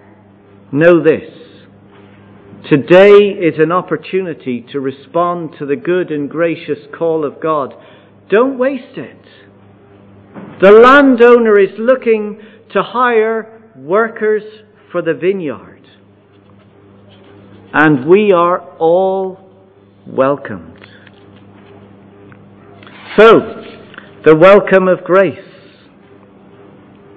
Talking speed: 85 wpm